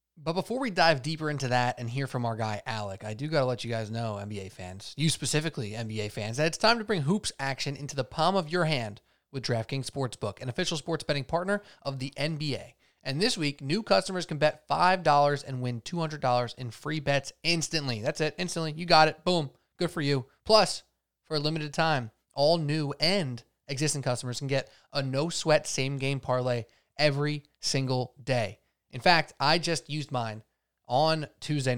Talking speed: 195 wpm